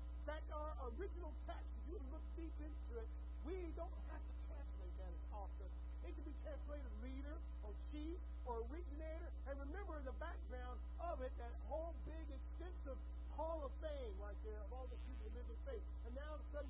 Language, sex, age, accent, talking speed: English, male, 50-69, American, 200 wpm